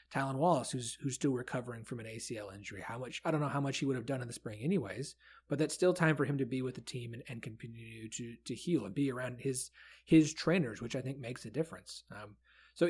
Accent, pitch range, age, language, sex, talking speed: American, 125-150 Hz, 30-49, English, male, 260 wpm